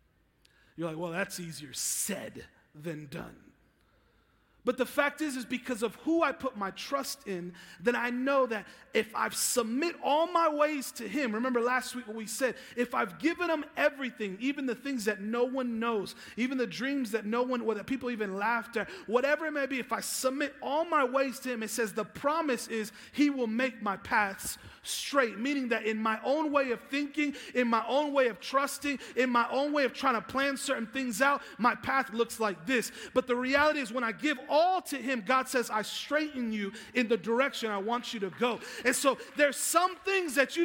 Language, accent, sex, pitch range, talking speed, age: English, American, male, 225-275 Hz, 215 wpm, 30-49